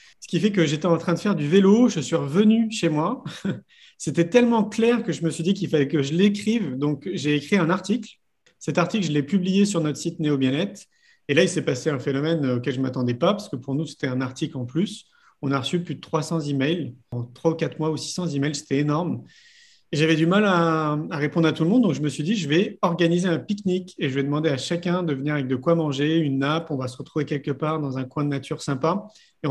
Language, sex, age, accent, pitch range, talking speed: French, male, 30-49, French, 150-200 Hz, 260 wpm